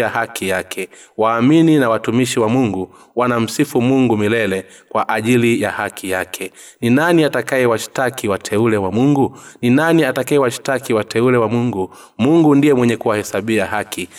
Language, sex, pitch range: Swahili, male, 105-130 Hz